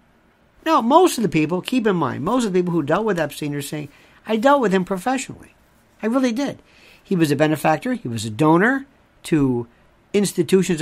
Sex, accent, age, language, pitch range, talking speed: male, American, 50-69, English, 145-210 Hz, 200 wpm